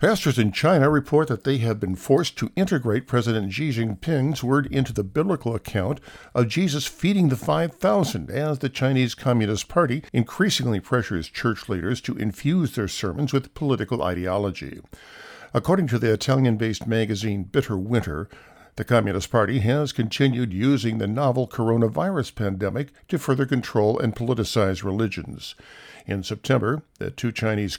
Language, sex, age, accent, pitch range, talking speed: English, male, 50-69, American, 105-140 Hz, 145 wpm